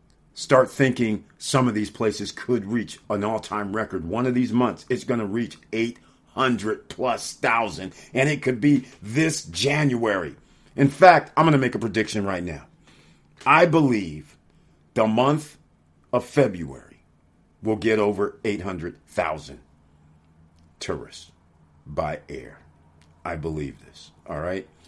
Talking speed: 135 wpm